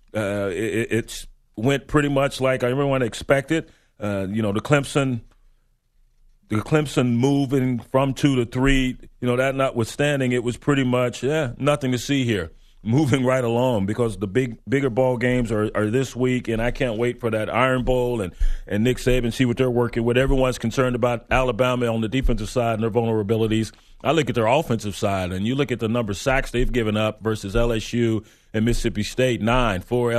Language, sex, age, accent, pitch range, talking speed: English, male, 30-49, American, 110-125 Hz, 190 wpm